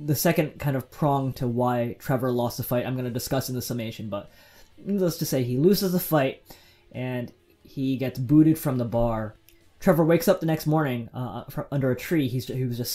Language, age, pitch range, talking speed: English, 20-39, 115-145 Hz, 220 wpm